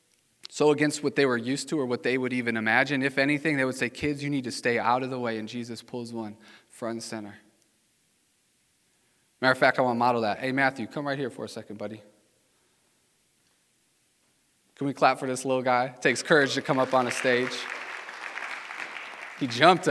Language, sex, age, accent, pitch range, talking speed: English, male, 20-39, American, 115-135 Hz, 205 wpm